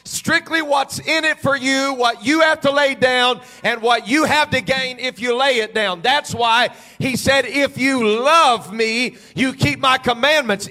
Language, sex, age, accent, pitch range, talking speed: English, male, 40-59, American, 240-300 Hz, 195 wpm